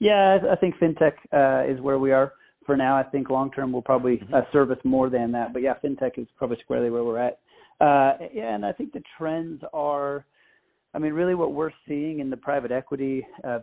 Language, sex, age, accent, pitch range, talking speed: English, male, 30-49, American, 125-140 Hz, 220 wpm